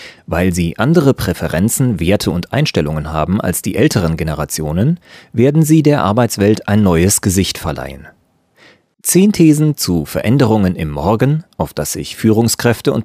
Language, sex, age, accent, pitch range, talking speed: German, male, 30-49, German, 85-120 Hz, 145 wpm